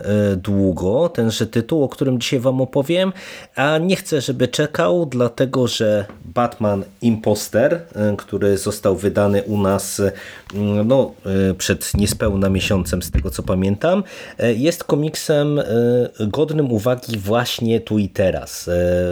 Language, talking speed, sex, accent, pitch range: Polish, 120 wpm, male, native, 100-125 Hz